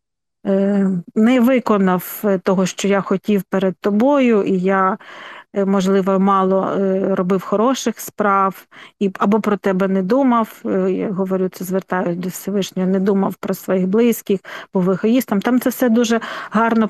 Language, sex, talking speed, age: Ukrainian, female, 140 wpm, 40-59